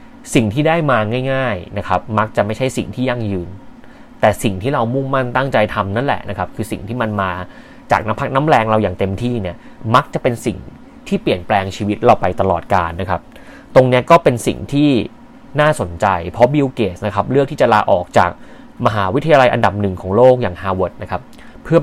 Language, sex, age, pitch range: Thai, male, 20-39, 100-130 Hz